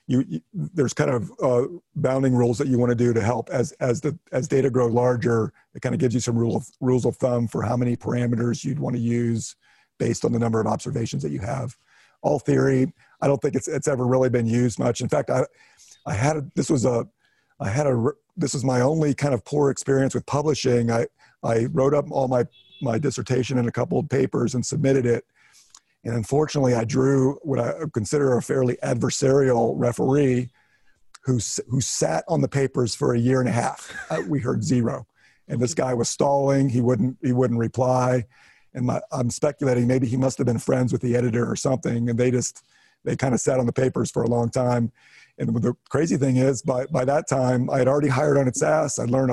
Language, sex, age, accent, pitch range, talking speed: English, male, 50-69, American, 120-140 Hz, 225 wpm